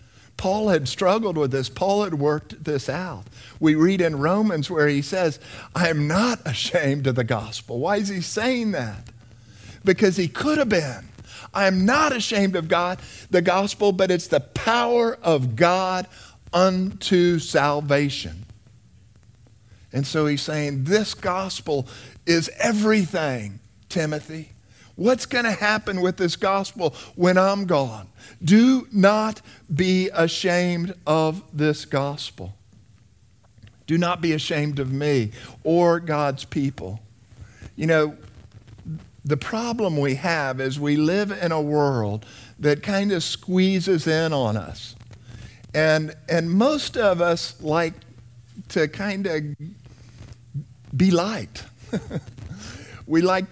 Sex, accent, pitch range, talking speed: male, American, 120-185 Hz, 130 wpm